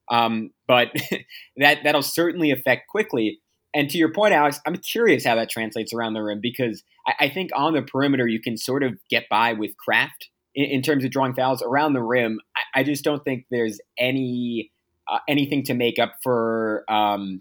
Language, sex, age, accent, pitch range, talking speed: English, male, 20-39, American, 115-140 Hz, 200 wpm